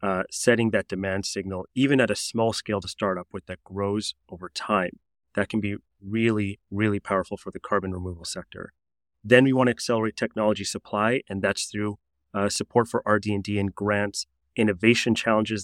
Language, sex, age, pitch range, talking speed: English, male, 30-49, 100-115 Hz, 180 wpm